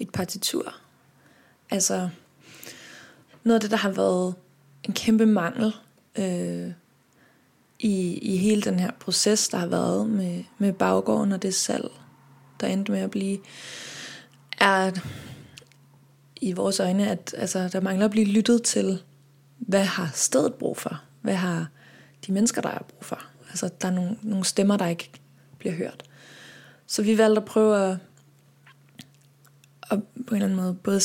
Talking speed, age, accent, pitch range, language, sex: 155 wpm, 20-39, native, 150-215 Hz, Danish, female